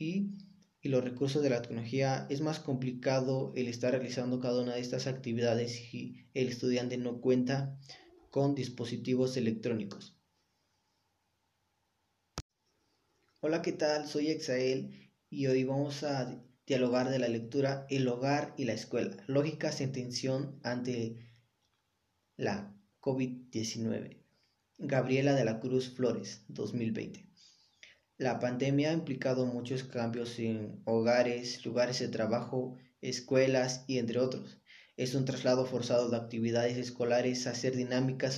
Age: 20-39